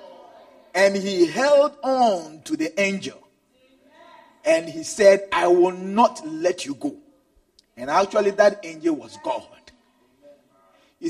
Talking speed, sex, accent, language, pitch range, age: 125 wpm, male, Nigerian, English, 210-320 Hz, 40-59